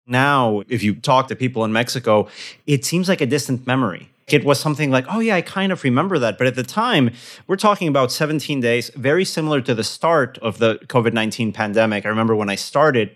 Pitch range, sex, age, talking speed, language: 120-155 Hz, male, 30-49, 220 wpm, English